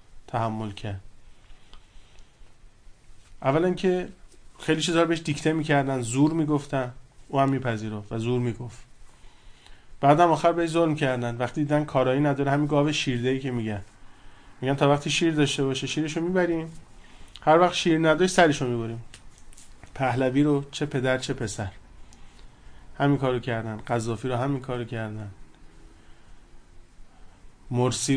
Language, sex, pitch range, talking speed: Persian, male, 115-150 Hz, 125 wpm